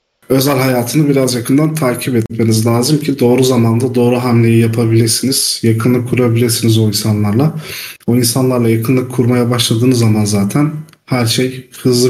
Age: 40-59